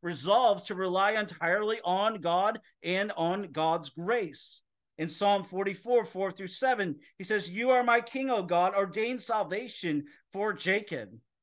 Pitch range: 170-220 Hz